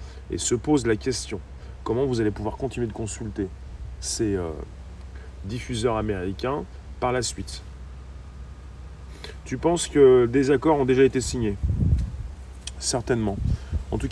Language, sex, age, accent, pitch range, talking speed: French, male, 40-59, French, 85-130 Hz, 130 wpm